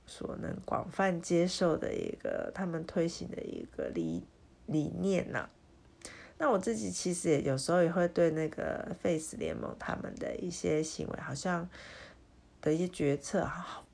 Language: Chinese